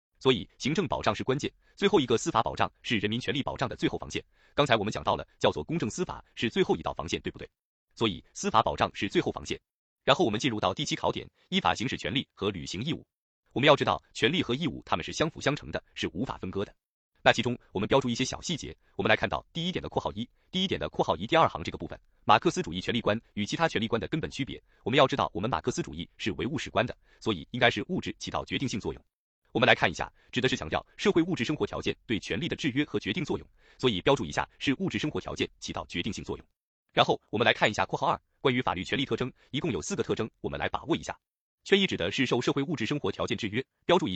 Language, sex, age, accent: Chinese, male, 30-49, native